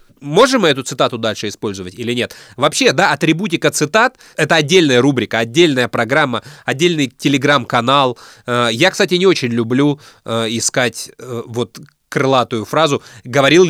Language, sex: Russian, male